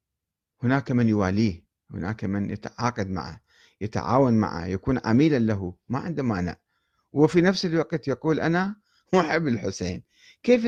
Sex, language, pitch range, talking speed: male, Arabic, 105-150 Hz, 130 wpm